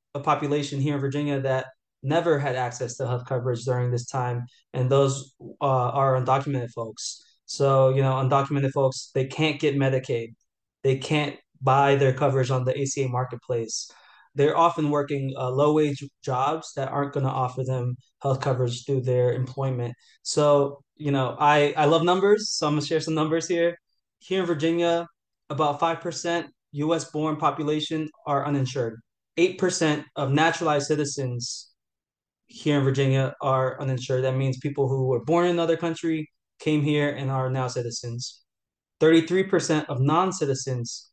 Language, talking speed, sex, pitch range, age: English, 155 wpm, male, 130-155 Hz, 20-39